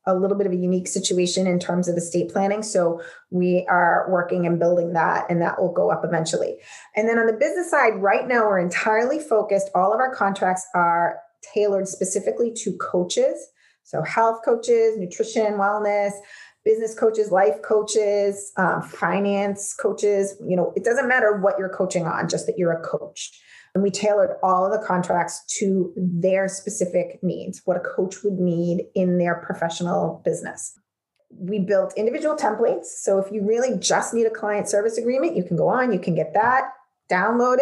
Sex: female